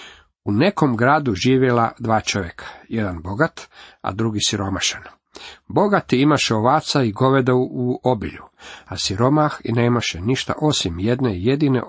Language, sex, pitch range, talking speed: Croatian, male, 105-130 Hz, 130 wpm